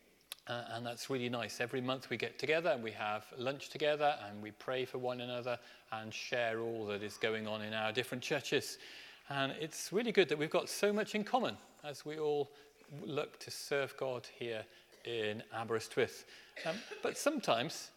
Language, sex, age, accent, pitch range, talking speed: English, male, 40-59, British, 115-160 Hz, 185 wpm